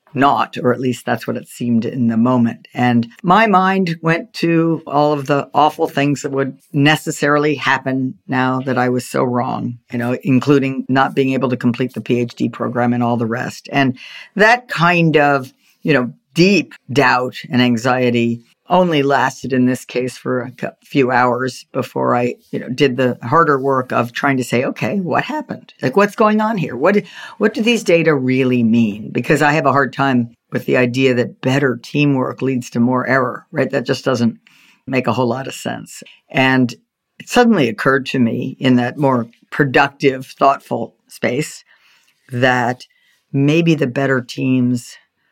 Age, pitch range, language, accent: 50-69, 125-150 Hz, English, American